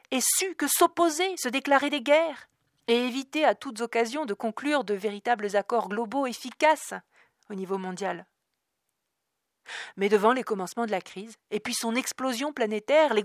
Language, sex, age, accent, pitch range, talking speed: French, female, 40-59, French, 195-260 Hz, 165 wpm